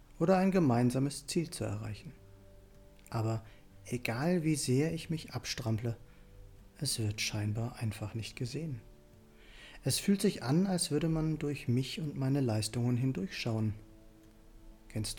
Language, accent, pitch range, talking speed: German, German, 110-150 Hz, 130 wpm